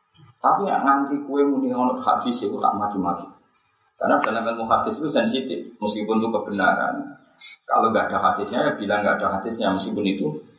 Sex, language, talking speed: male, Indonesian, 165 wpm